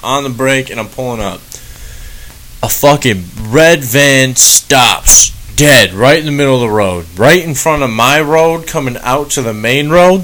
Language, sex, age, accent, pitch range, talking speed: English, male, 20-39, American, 110-135 Hz, 190 wpm